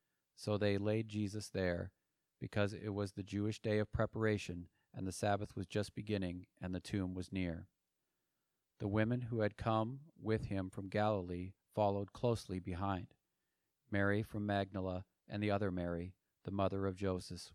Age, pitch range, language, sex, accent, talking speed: 40-59, 95-110 Hz, English, male, American, 160 wpm